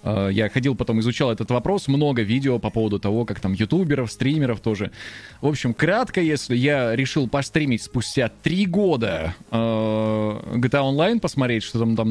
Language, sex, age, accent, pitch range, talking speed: Russian, male, 20-39, native, 110-145 Hz, 170 wpm